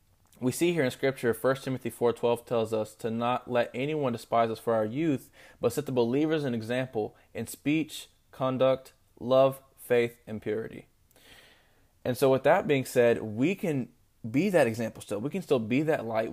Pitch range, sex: 110-135 Hz, male